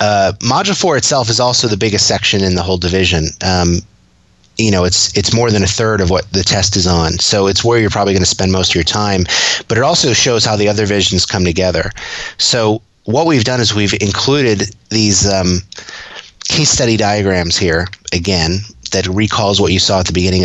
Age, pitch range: 30-49, 95-115 Hz